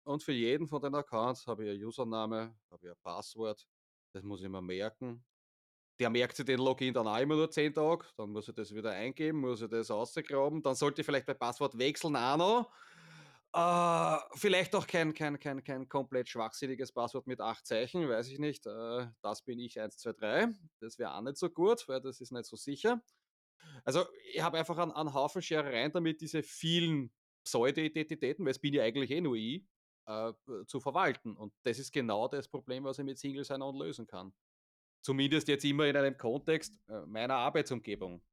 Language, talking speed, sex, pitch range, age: German, 205 wpm, male, 115-155 Hz, 30-49